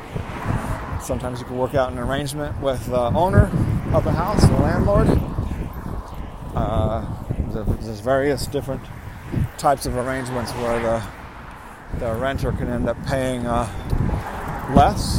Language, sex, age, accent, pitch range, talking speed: English, male, 50-69, American, 110-135 Hz, 125 wpm